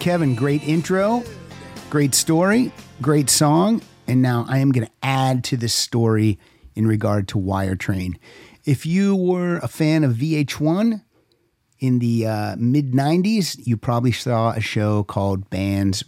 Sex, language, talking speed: male, English, 145 wpm